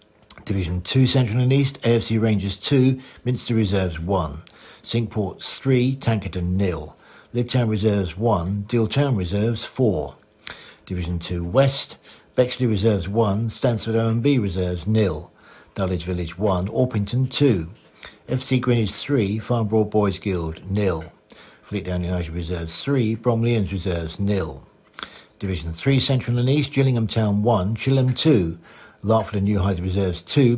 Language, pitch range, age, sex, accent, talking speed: English, 95-120 Hz, 60-79, male, British, 135 wpm